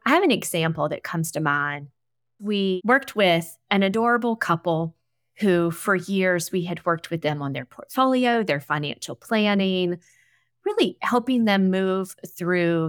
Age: 30-49